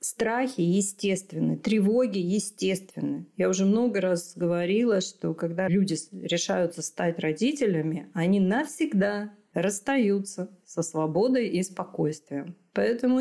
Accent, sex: native, female